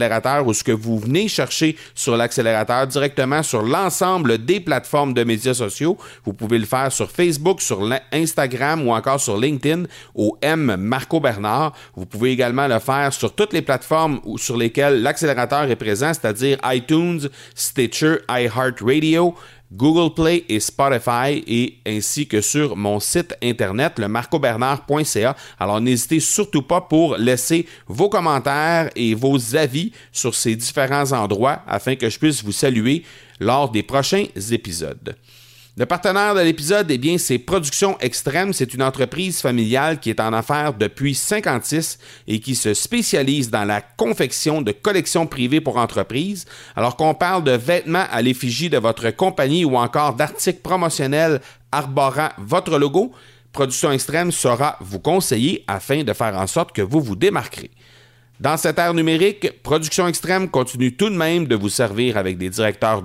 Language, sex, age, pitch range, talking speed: French, male, 40-59, 120-160 Hz, 160 wpm